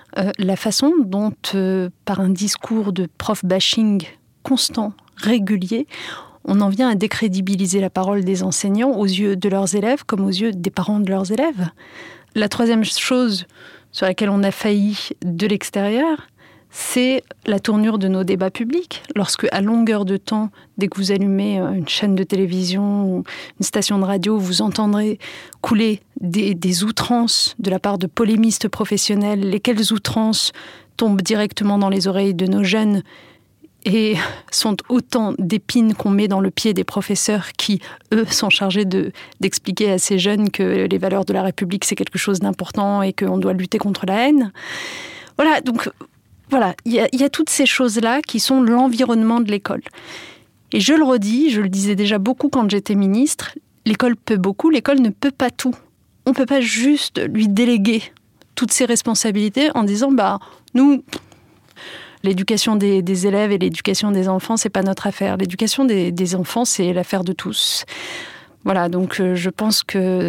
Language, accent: French, French